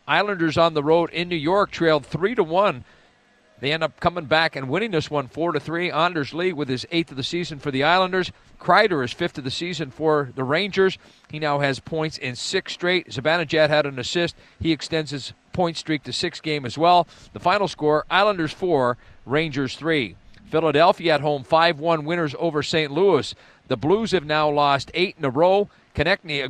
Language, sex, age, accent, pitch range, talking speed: English, male, 40-59, American, 140-175 Hz, 195 wpm